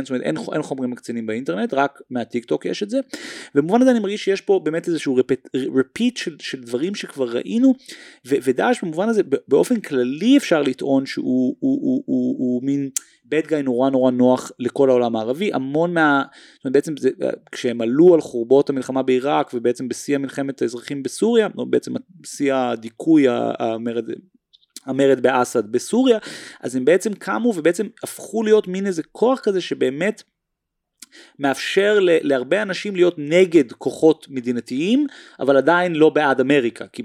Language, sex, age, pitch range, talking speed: Hebrew, male, 30-49, 130-200 Hz, 155 wpm